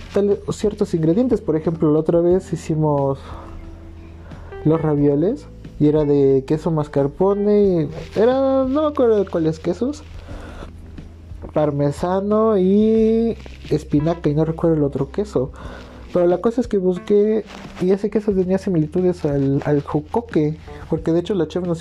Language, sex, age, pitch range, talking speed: Spanish, male, 30-49, 140-210 Hz, 145 wpm